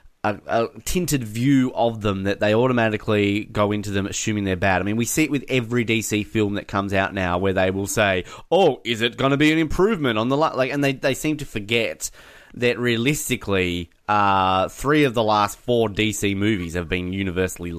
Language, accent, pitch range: English, Australian, 100-130 Hz